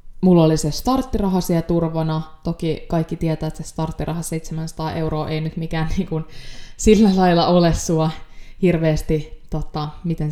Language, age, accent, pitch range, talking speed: Finnish, 20-39, native, 155-175 Hz, 145 wpm